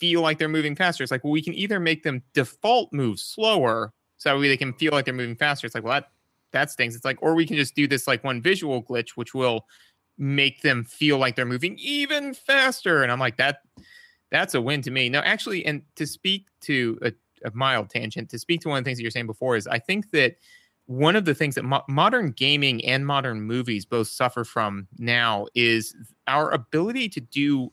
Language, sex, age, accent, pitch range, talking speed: English, male, 30-49, American, 120-155 Hz, 235 wpm